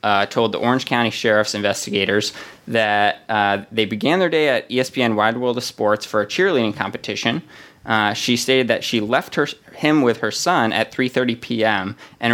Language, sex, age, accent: English, male, 20-39, American